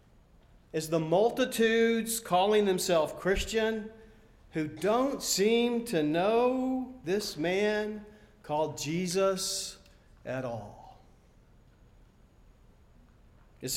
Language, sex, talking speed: English, male, 80 wpm